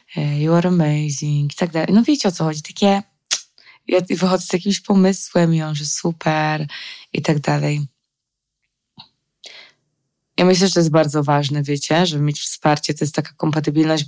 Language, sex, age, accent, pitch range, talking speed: Polish, female, 20-39, native, 150-185 Hz, 160 wpm